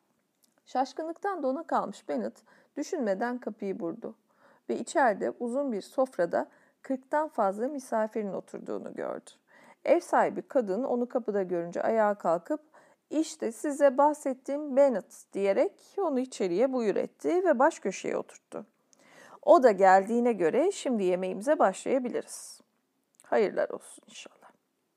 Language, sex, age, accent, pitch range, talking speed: Turkish, female, 40-59, native, 200-280 Hz, 120 wpm